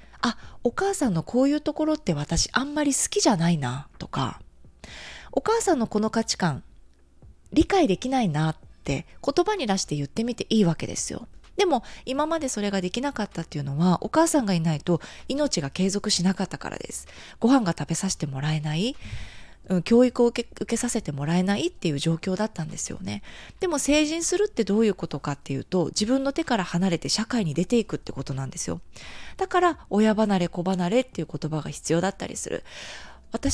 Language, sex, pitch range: Japanese, female, 165-265 Hz